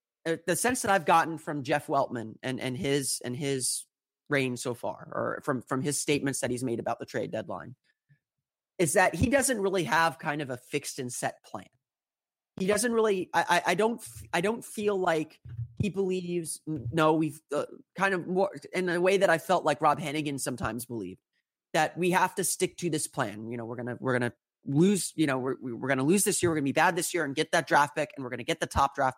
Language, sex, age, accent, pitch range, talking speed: English, male, 30-49, American, 130-175 Hz, 230 wpm